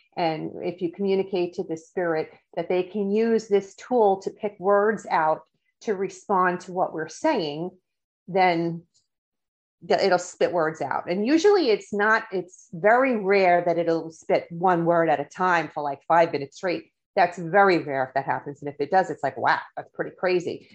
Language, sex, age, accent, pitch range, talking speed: English, female, 40-59, American, 160-200 Hz, 185 wpm